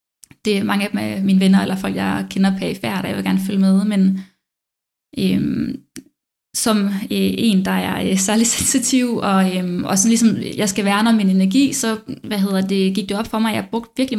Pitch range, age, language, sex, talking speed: 190-225 Hz, 20-39, English, female, 210 wpm